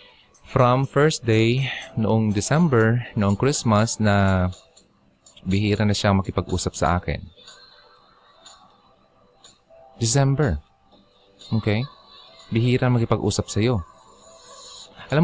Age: 20-39